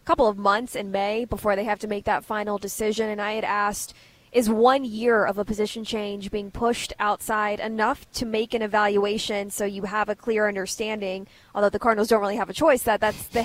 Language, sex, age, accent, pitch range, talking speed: English, female, 20-39, American, 210-230 Hz, 220 wpm